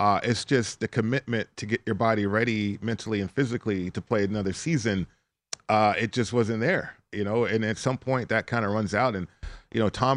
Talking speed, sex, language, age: 220 wpm, male, English, 40-59